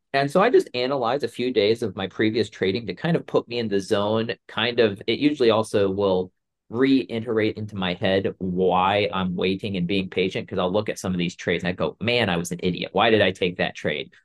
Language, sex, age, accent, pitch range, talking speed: English, male, 40-59, American, 100-125 Hz, 245 wpm